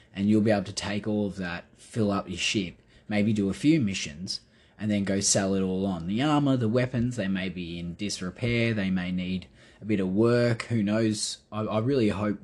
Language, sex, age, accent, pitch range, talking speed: English, male, 20-39, Australian, 100-110 Hz, 225 wpm